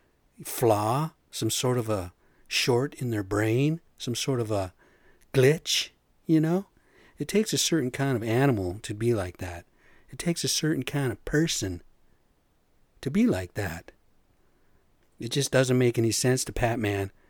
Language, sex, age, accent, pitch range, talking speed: English, male, 50-69, American, 110-145 Hz, 160 wpm